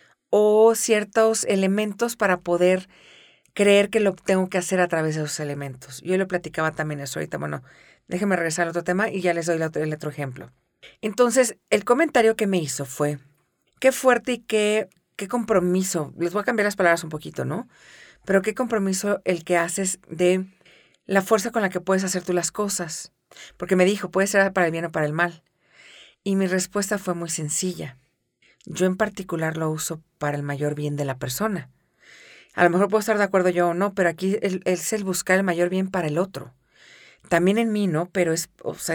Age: 40-59